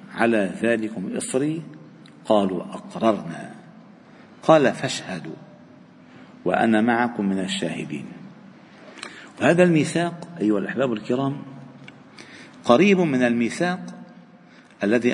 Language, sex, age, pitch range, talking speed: Arabic, male, 50-69, 115-170 Hz, 80 wpm